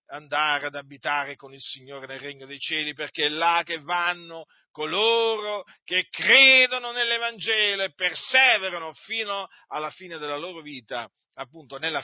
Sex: male